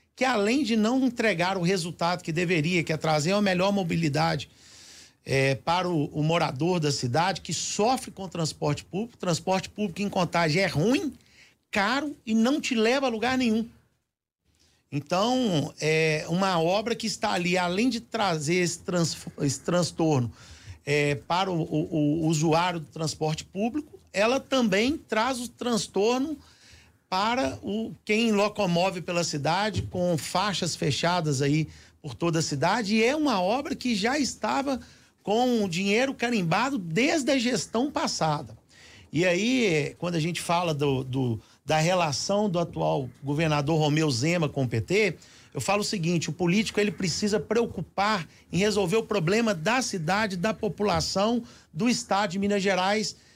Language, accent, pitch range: Portuguese, Brazilian, 160-220 Hz